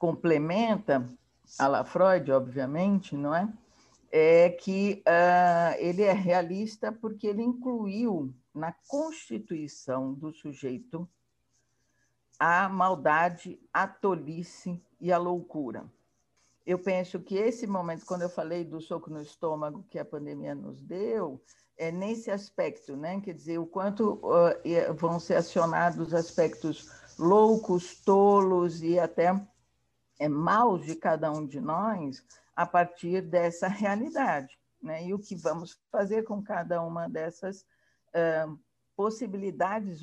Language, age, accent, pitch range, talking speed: Portuguese, 60-79, Brazilian, 155-195 Hz, 125 wpm